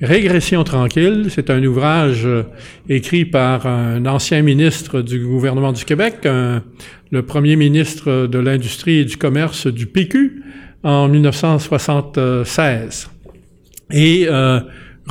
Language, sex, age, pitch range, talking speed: French, male, 50-69, 130-160 Hz, 125 wpm